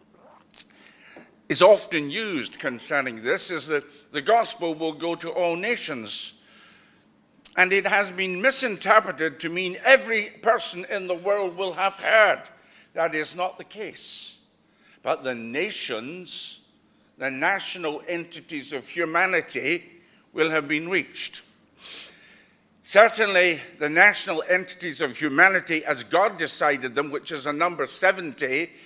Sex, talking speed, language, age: male, 125 wpm, English, 60-79